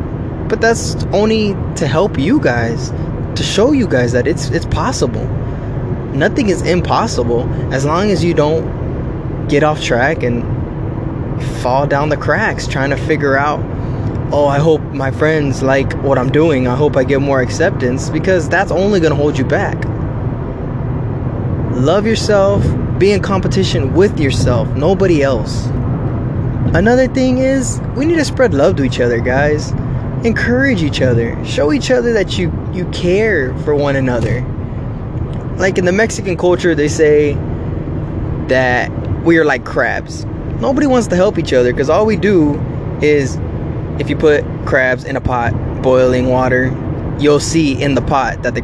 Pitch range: 125-150 Hz